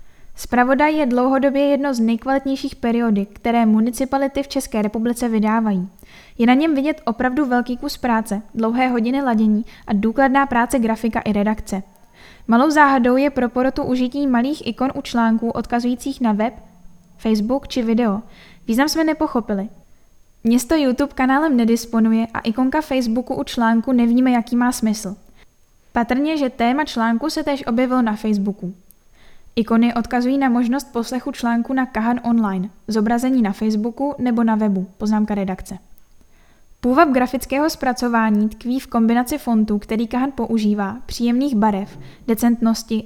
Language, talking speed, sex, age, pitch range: Czech, 140 wpm, female, 10-29, 220-260 Hz